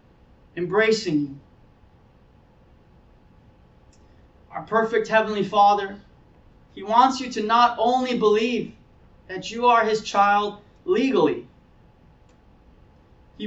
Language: English